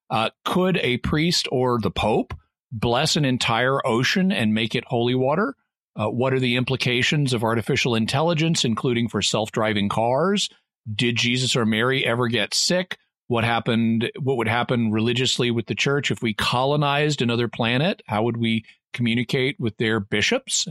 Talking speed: 160 wpm